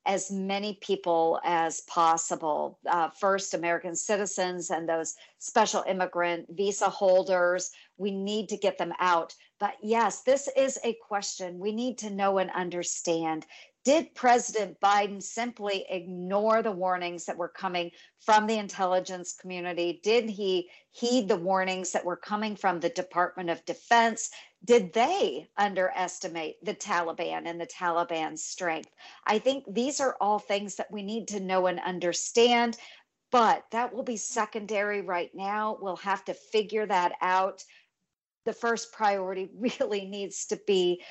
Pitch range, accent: 180-220 Hz, American